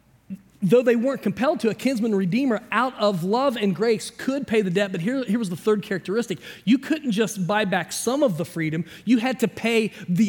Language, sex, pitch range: English, male, 195-250 Hz